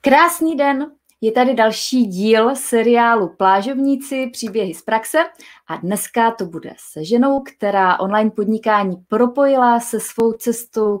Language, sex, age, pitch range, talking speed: Czech, female, 20-39, 195-245 Hz, 130 wpm